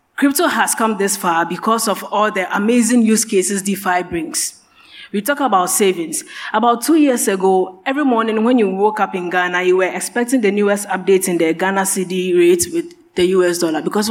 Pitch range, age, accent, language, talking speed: 185-225 Hz, 20-39, Nigerian, English, 195 wpm